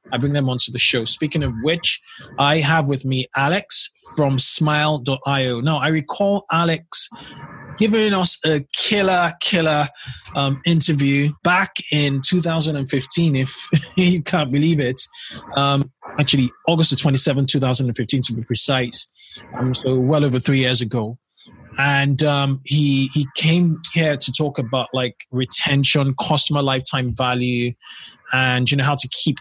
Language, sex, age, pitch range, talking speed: English, male, 20-39, 130-150 Hz, 145 wpm